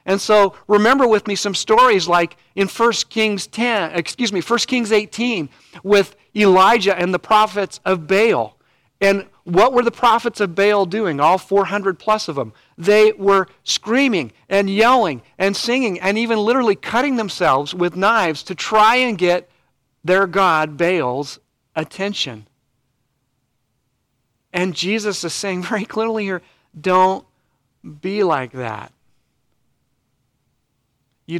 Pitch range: 130-195 Hz